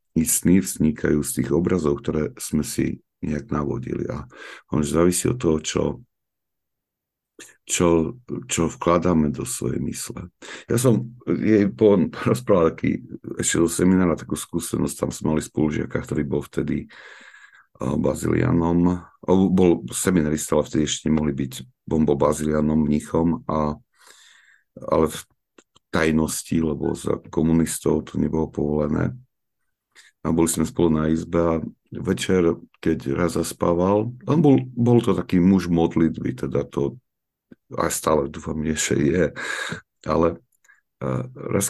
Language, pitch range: Slovak, 75-90 Hz